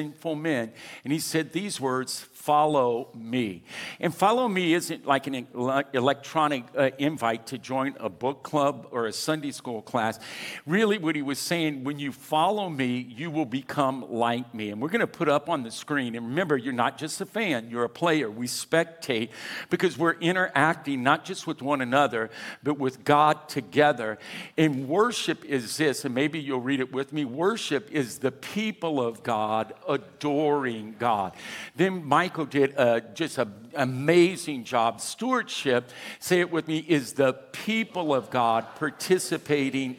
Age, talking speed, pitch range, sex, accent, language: 60-79, 170 wpm, 125-165 Hz, male, American, English